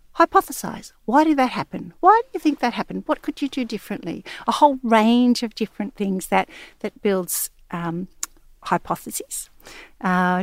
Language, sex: English, female